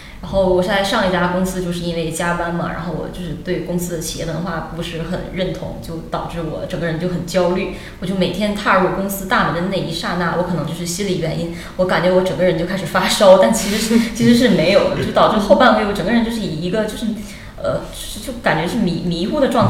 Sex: female